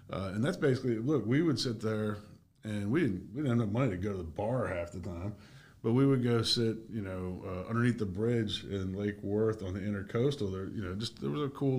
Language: English